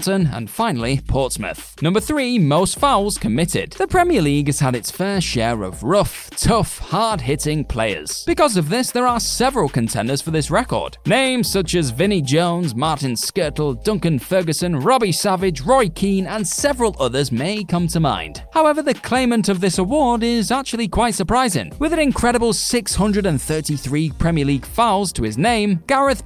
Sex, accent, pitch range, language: male, British, 145-230 Hz, English